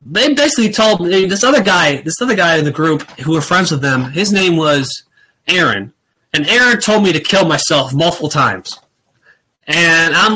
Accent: American